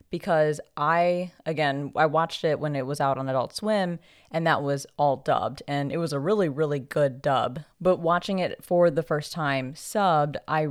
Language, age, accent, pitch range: English, 20-39, American, 140-175 Hz